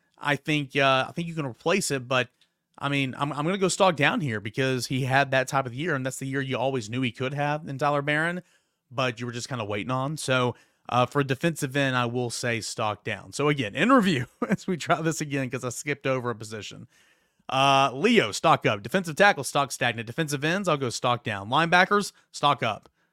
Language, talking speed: English, 235 wpm